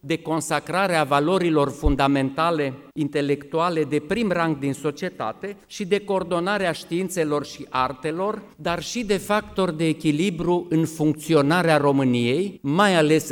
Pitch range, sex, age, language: 140-180 Hz, male, 50-69, English